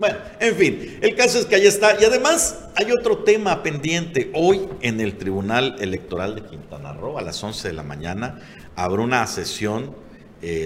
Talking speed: 185 wpm